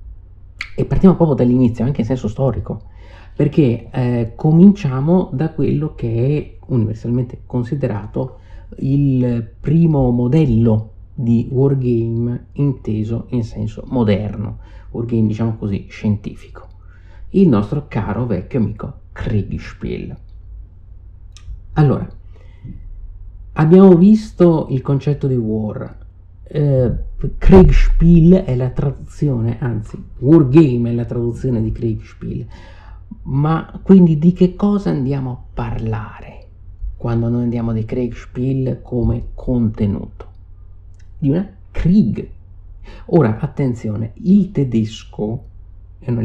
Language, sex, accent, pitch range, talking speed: Italian, male, native, 95-135 Hz, 100 wpm